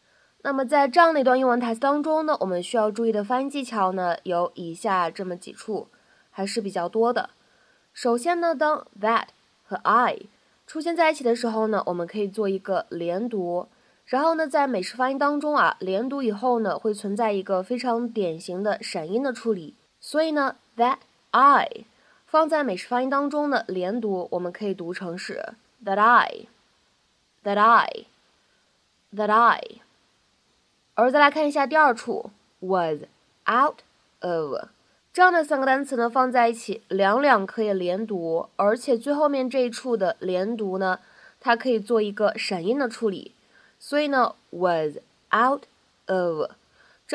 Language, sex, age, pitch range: Chinese, female, 20-39, 195-270 Hz